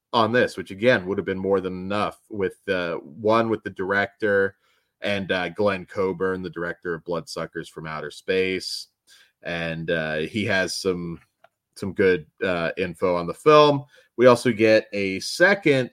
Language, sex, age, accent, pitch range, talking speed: English, male, 30-49, American, 95-115 Hz, 170 wpm